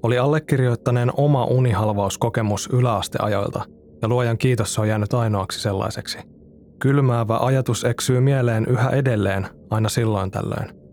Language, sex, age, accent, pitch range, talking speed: Finnish, male, 20-39, native, 110-130 Hz, 115 wpm